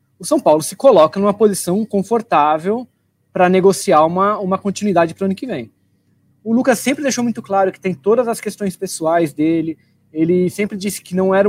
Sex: male